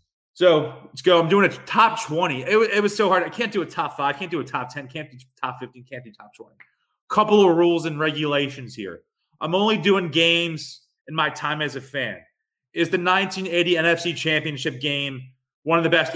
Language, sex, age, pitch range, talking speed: English, male, 30-49, 130-170 Hz, 220 wpm